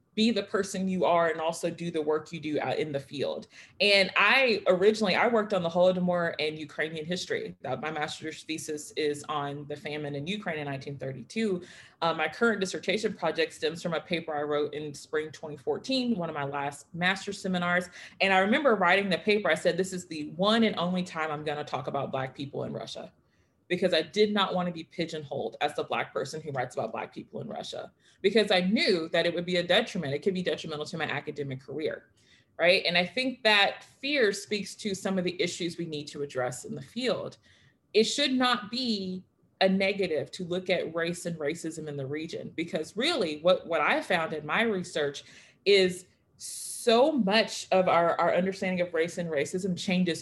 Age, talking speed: 30-49, 205 wpm